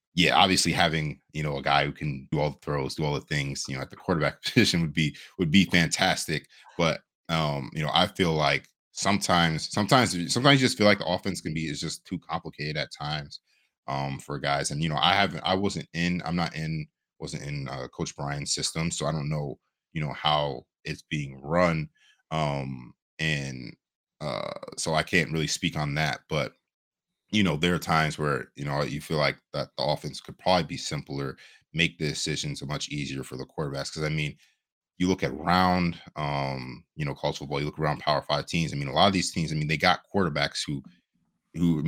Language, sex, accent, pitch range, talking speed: English, male, American, 70-85 Hz, 220 wpm